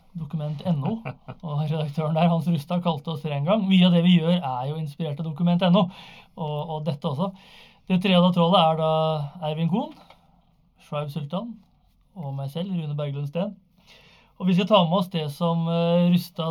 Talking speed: 180 wpm